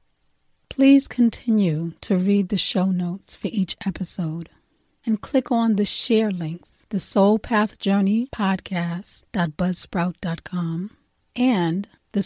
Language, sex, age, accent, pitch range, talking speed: English, female, 40-59, American, 175-210 Hz, 100 wpm